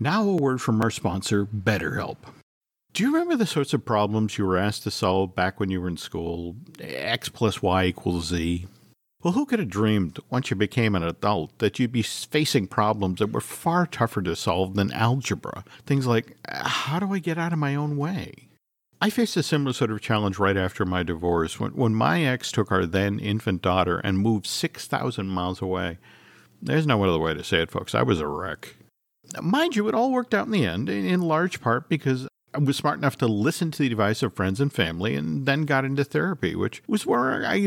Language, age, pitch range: English, 50-69, 100-150 Hz